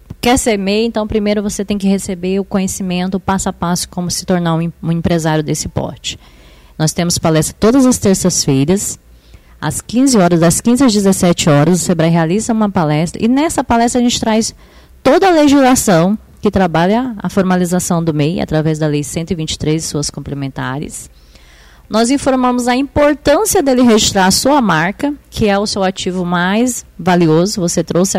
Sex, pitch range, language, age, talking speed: female, 170-215 Hz, Portuguese, 20-39, 170 wpm